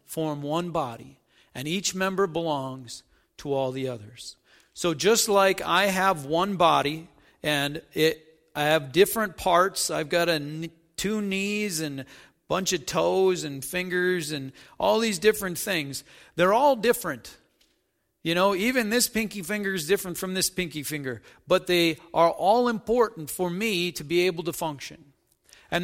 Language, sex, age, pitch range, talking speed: English, male, 40-59, 150-205 Hz, 165 wpm